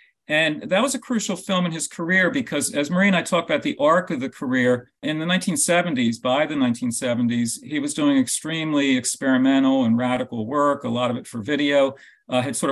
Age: 50-69